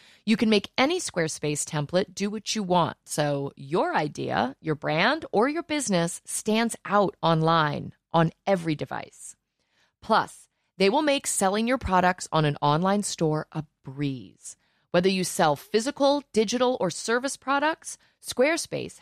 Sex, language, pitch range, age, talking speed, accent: female, English, 155-230 Hz, 30-49, 145 wpm, American